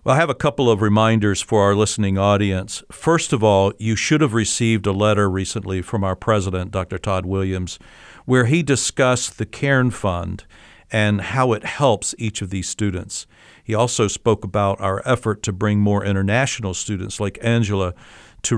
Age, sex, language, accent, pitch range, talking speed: 50-69, male, English, American, 95-115 Hz, 180 wpm